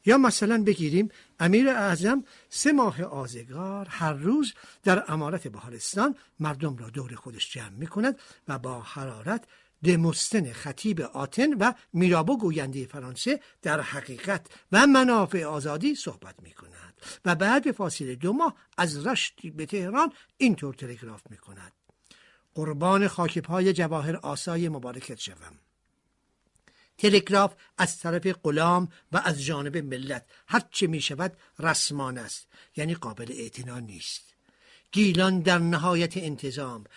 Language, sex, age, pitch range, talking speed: Persian, male, 60-79, 145-205 Hz, 125 wpm